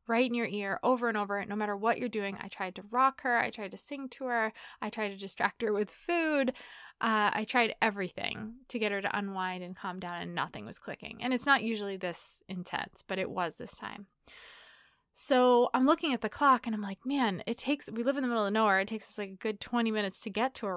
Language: English